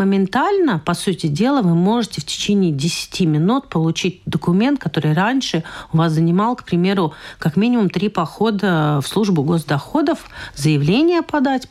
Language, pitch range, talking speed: Russian, 160-225 Hz, 145 wpm